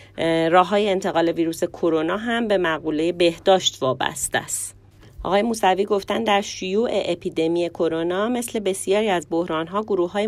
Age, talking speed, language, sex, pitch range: 30-49, 145 wpm, Persian, female, 160-205 Hz